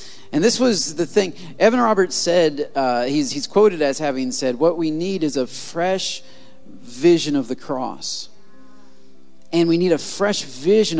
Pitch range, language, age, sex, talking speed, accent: 140-195 Hz, English, 40-59, male, 170 wpm, American